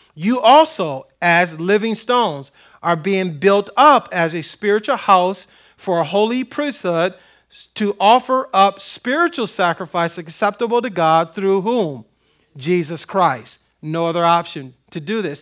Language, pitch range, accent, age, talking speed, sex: English, 165-205 Hz, American, 40-59, 135 wpm, male